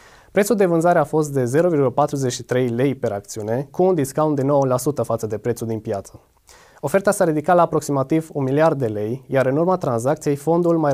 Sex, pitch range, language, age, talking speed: male, 120-155 Hz, Romanian, 20-39, 190 wpm